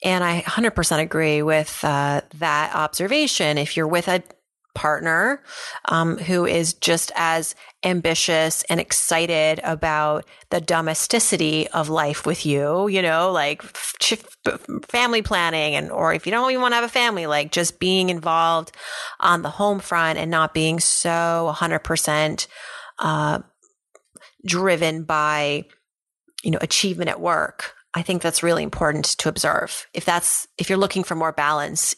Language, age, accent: English, 30-49, American